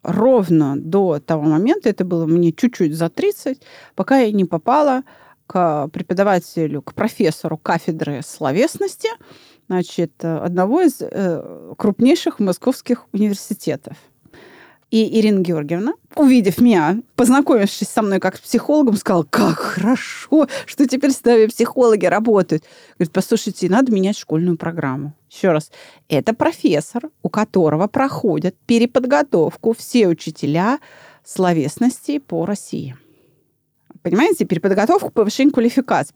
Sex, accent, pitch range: female, native, 180-260 Hz